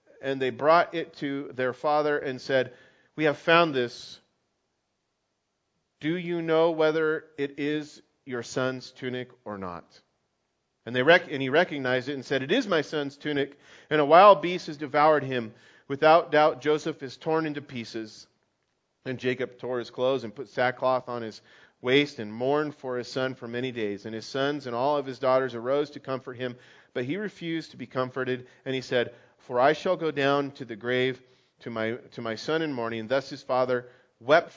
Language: English